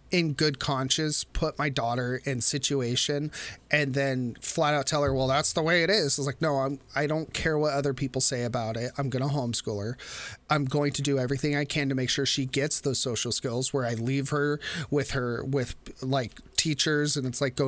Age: 30-49